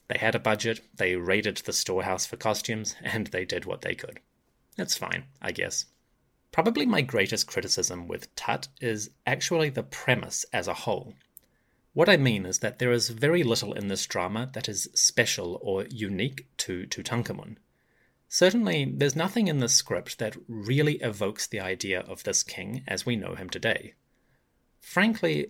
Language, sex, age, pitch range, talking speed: English, male, 30-49, 110-150 Hz, 170 wpm